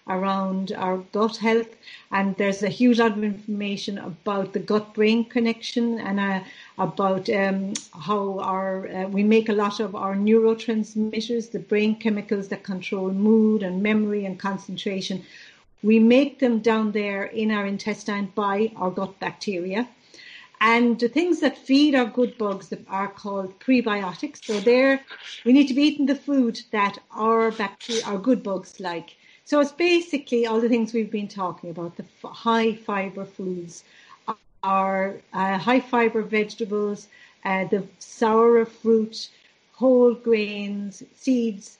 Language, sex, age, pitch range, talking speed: English, female, 60-79, 195-230 Hz, 150 wpm